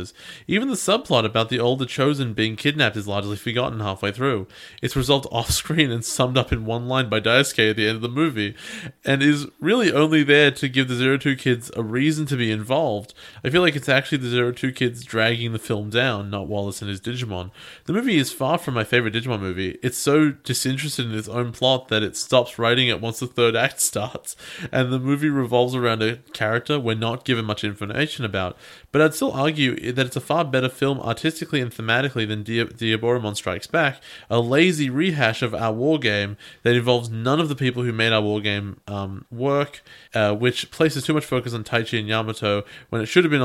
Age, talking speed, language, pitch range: 20-39, 215 wpm, English, 110-135 Hz